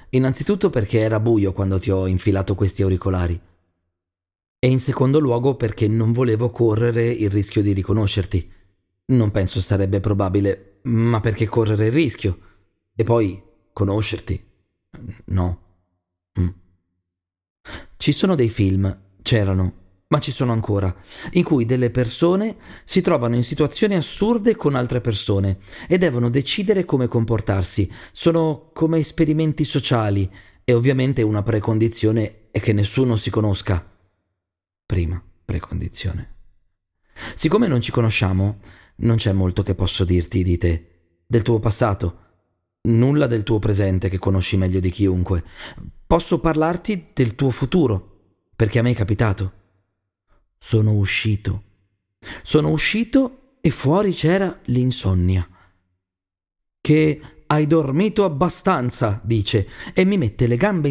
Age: 30-49